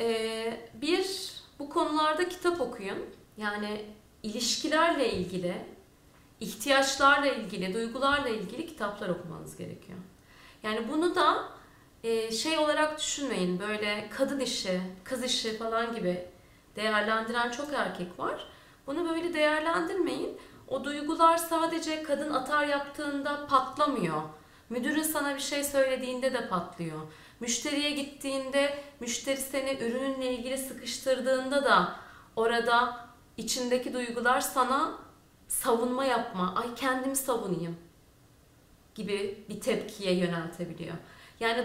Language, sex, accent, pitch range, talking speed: Turkish, female, native, 225-300 Hz, 100 wpm